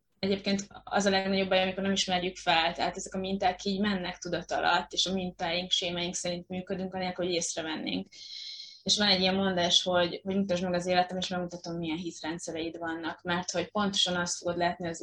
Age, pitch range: 20-39, 175-195 Hz